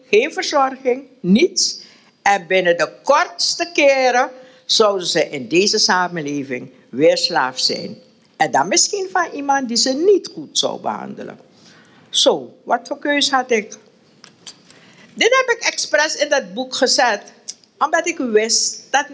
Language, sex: Dutch, female